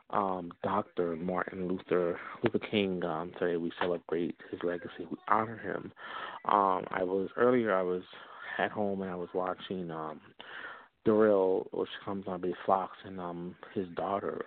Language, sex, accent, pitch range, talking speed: English, male, American, 90-100 Hz, 160 wpm